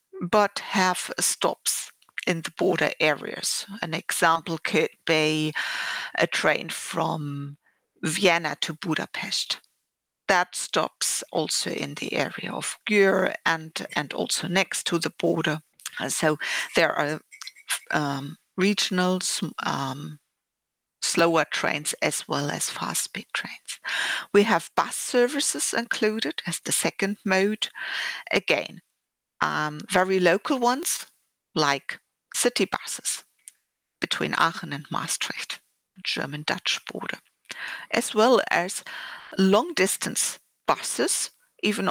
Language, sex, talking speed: French, female, 110 wpm